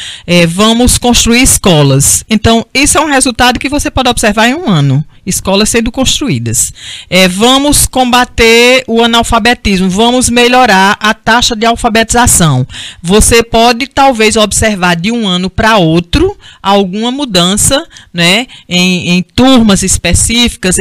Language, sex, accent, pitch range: Portuguese, female, Brazilian, 170-235 Hz